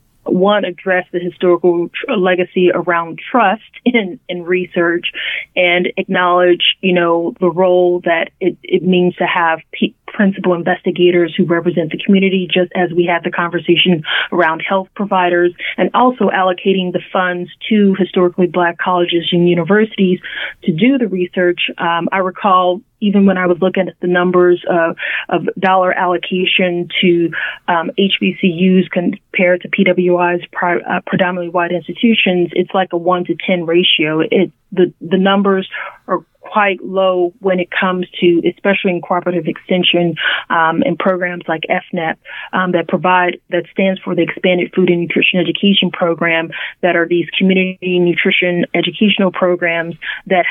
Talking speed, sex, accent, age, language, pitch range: 150 wpm, female, American, 30-49, English, 175-190 Hz